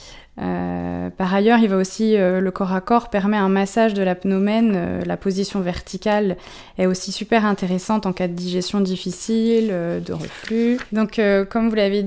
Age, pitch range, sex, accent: 20-39, 185-220 Hz, female, French